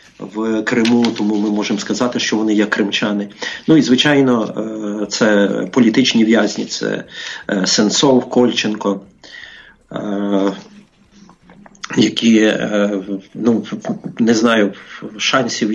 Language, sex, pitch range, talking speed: English, male, 100-115 Hz, 90 wpm